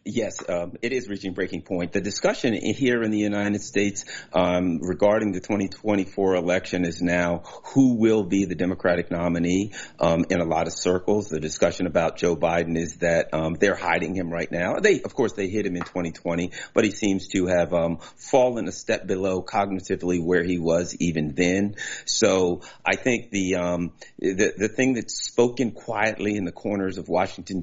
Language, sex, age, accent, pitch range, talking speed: English, male, 40-59, American, 85-100 Hz, 185 wpm